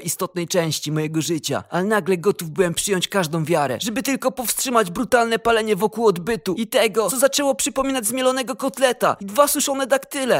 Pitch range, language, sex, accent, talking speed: 200-255 Hz, Polish, male, native, 165 wpm